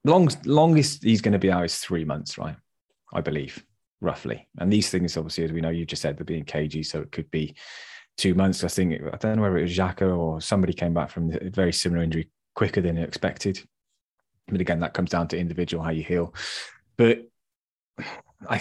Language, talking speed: English, 215 wpm